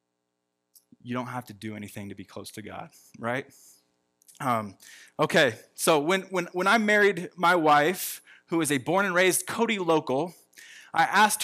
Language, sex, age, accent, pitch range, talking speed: English, male, 20-39, American, 160-220 Hz, 170 wpm